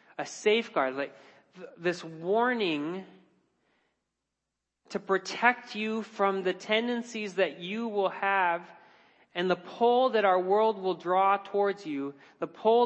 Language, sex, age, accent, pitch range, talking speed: English, male, 40-59, American, 140-210 Hz, 125 wpm